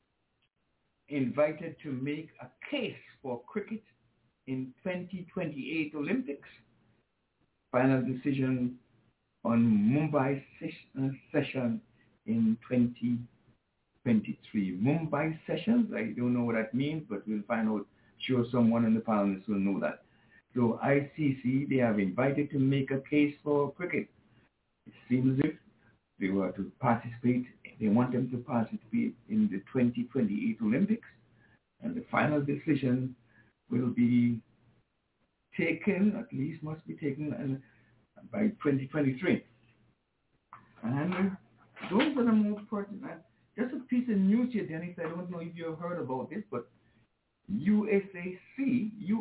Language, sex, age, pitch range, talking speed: English, male, 60-79, 120-190 Hz, 125 wpm